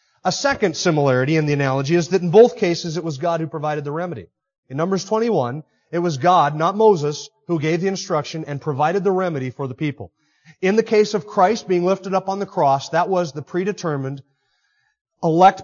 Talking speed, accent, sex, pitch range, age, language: 205 wpm, American, male, 145-185 Hz, 30-49, English